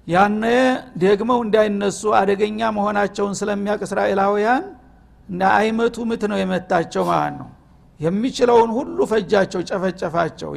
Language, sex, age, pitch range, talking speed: Amharic, male, 60-79, 195-220 Hz, 95 wpm